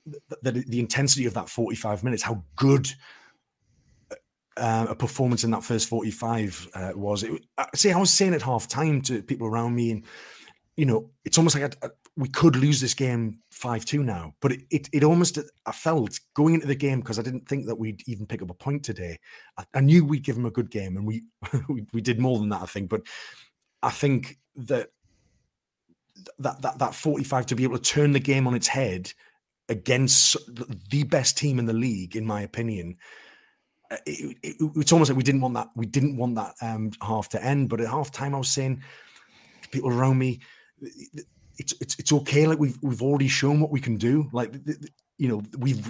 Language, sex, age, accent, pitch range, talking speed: English, male, 30-49, British, 115-140 Hz, 215 wpm